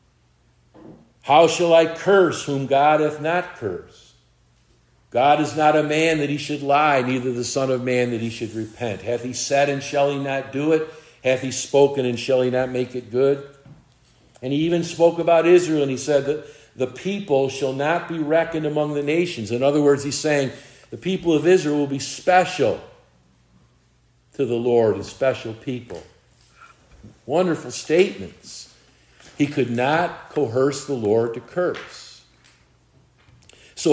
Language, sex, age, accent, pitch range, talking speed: English, male, 50-69, American, 125-155 Hz, 165 wpm